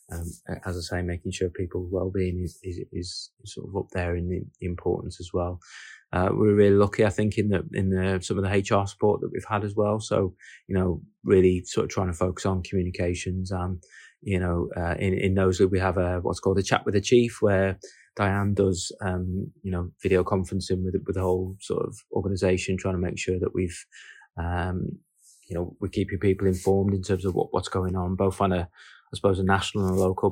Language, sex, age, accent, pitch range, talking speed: English, male, 20-39, British, 90-95 Hz, 225 wpm